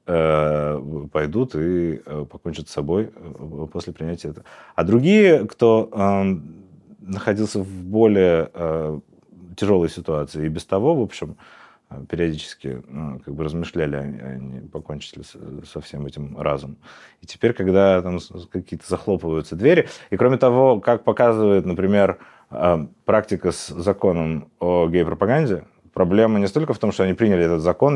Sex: male